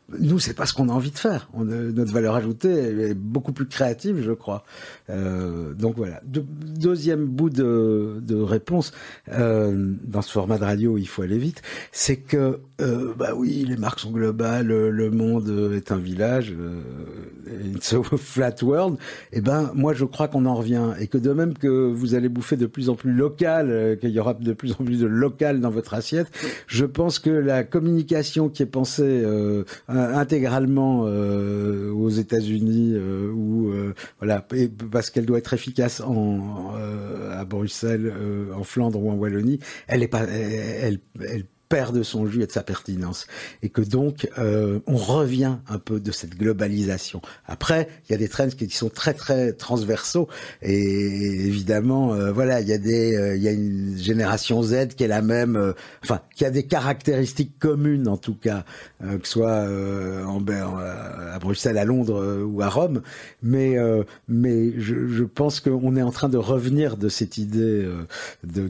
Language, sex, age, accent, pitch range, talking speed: French, male, 50-69, French, 105-130 Hz, 195 wpm